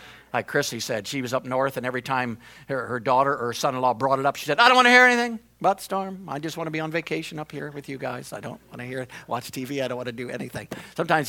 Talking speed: 300 wpm